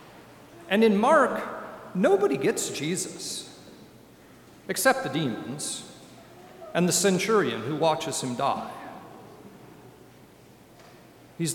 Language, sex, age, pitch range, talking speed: English, male, 50-69, 135-185 Hz, 90 wpm